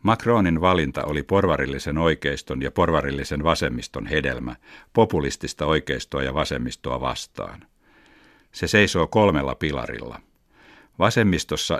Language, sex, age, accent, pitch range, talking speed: Finnish, male, 60-79, native, 70-90 Hz, 95 wpm